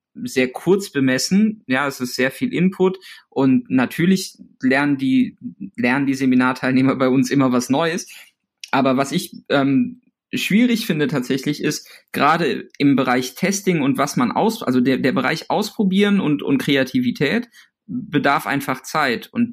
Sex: male